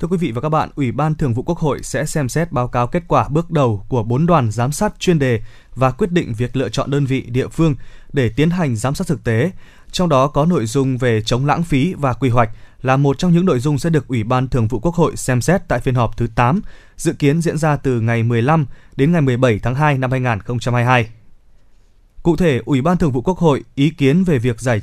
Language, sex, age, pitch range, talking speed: Vietnamese, male, 20-39, 120-160 Hz, 255 wpm